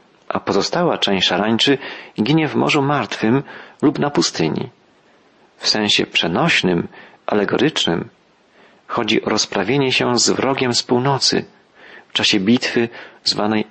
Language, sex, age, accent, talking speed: Polish, male, 40-59, native, 120 wpm